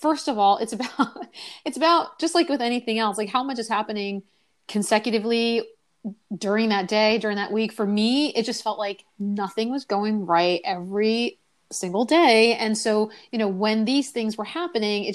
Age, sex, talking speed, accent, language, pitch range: 30-49, female, 185 wpm, American, English, 200-255 Hz